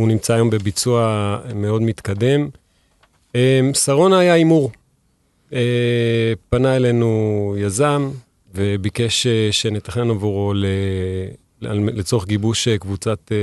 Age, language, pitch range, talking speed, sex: 30-49, Hebrew, 105-125 Hz, 80 wpm, male